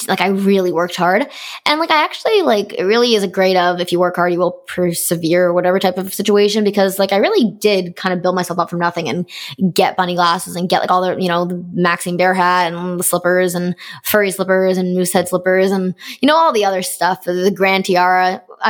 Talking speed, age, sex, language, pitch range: 240 wpm, 20-39, female, English, 175-205 Hz